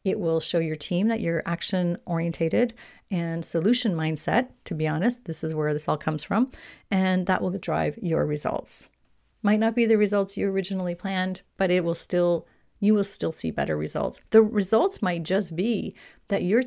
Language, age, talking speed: English, 40-59, 185 wpm